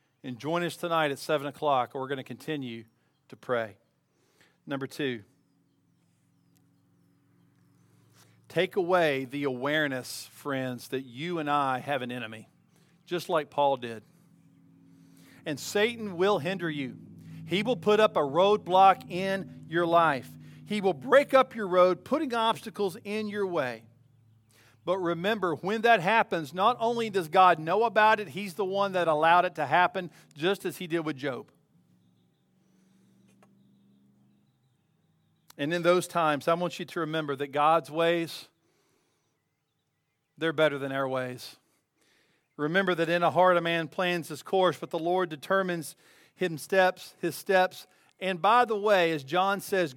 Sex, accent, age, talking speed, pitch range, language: male, American, 50-69, 150 wpm, 140-185 Hz, English